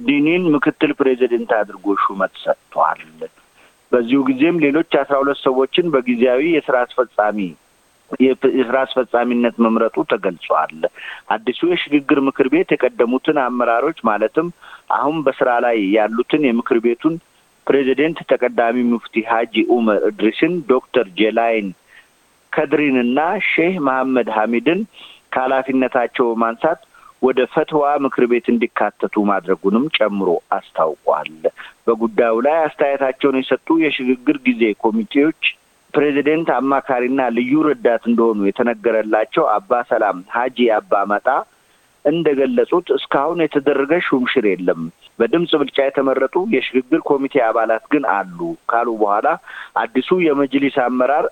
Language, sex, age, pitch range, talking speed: Amharic, male, 50-69, 115-150 Hz, 95 wpm